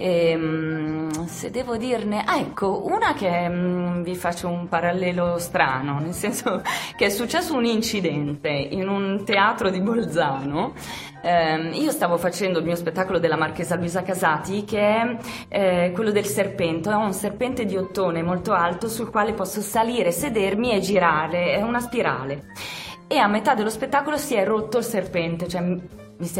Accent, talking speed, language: native, 165 wpm, Italian